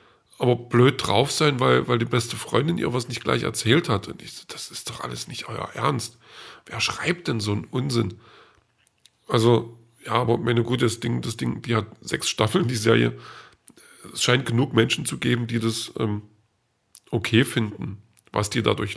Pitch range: 110-125 Hz